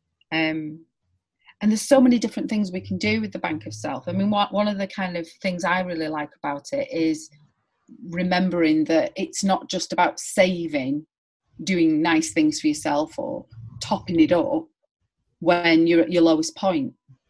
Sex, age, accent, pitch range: female, 30-49, British, 160-210 Hz